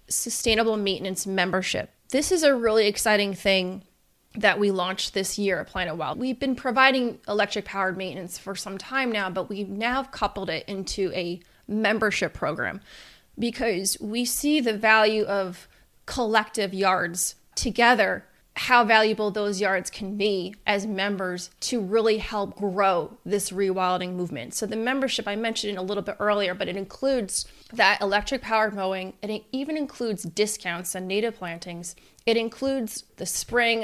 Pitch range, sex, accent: 195-230 Hz, female, American